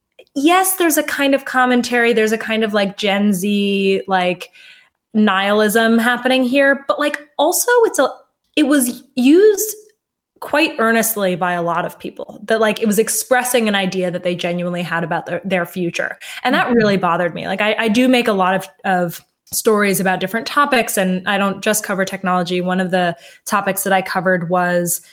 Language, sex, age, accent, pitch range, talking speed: English, female, 20-39, American, 185-255 Hz, 190 wpm